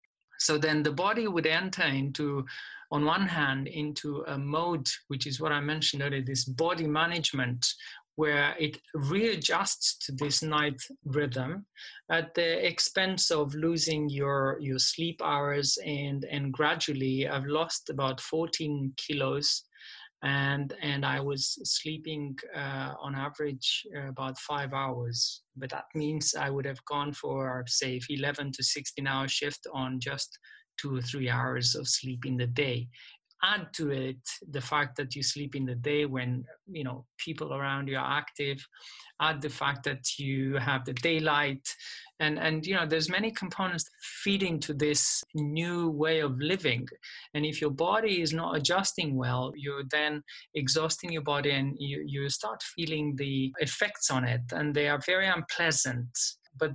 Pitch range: 135-160 Hz